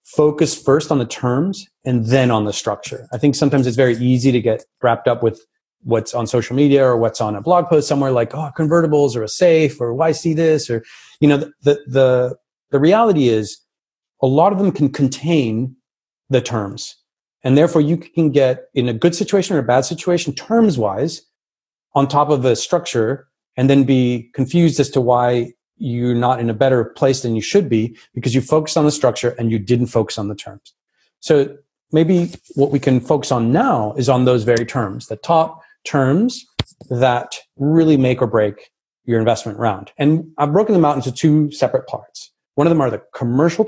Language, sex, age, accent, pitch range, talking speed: English, male, 30-49, American, 120-155 Hz, 200 wpm